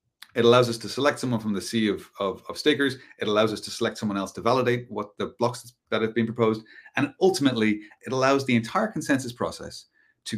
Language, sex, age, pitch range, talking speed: English, male, 30-49, 105-130 Hz, 220 wpm